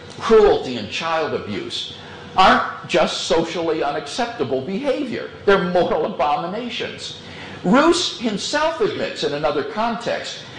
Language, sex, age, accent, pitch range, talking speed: English, male, 50-69, American, 155-255 Hz, 100 wpm